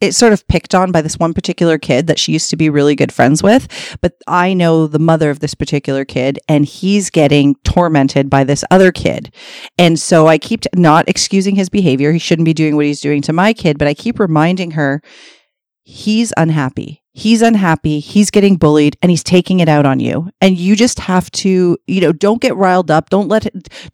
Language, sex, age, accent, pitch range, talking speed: English, female, 40-59, American, 155-200 Hz, 220 wpm